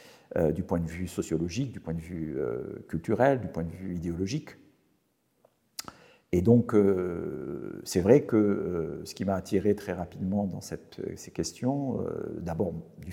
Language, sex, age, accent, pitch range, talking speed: French, male, 50-69, French, 85-105 Hz, 170 wpm